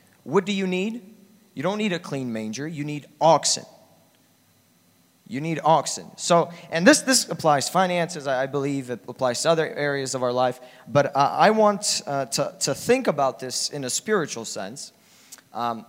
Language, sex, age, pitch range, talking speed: English, male, 20-39, 120-160 Hz, 180 wpm